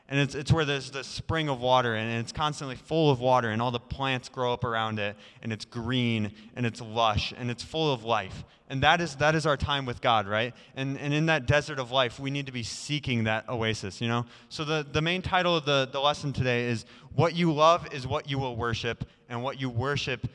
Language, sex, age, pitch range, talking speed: English, male, 20-39, 115-145 Hz, 245 wpm